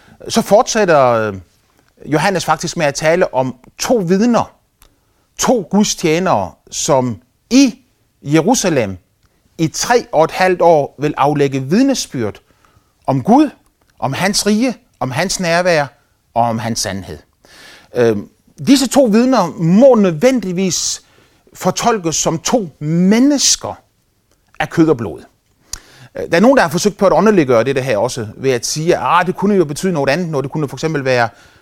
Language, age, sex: Danish, 30-49, male